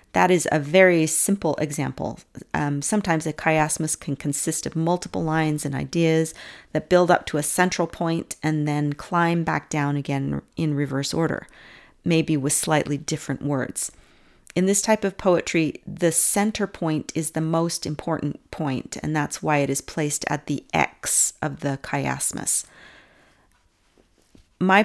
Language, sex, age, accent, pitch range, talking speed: English, female, 40-59, American, 150-180 Hz, 155 wpm